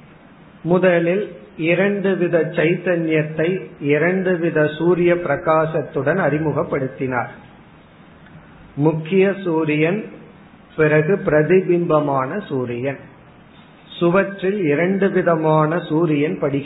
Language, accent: Tamil, native